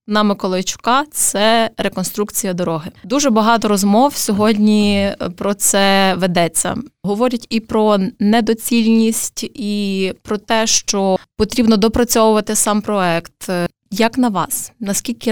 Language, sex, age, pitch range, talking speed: Ukrainian, female, 20-39, 195-230 Hz, 110 wpm